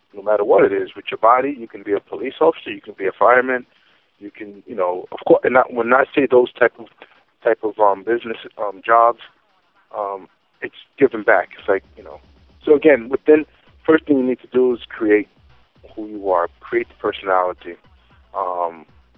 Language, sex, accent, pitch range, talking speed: English, male, American, 90-125 Hz, 205 wpm